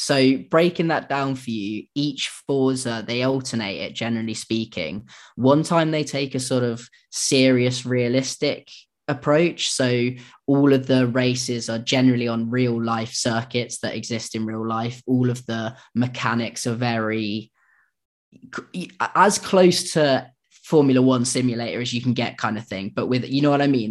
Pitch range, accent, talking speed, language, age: 115-130 Hz, British, 165 wpm, English, 20-39